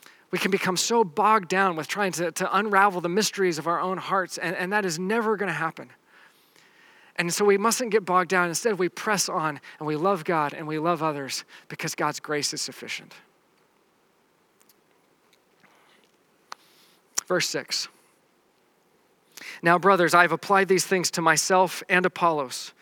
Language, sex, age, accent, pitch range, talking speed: English, male, 40-59, American, 165-195 Hz, 160 wpm